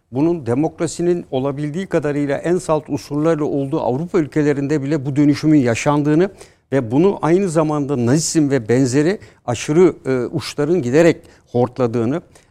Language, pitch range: Turkish, 125-155 Hz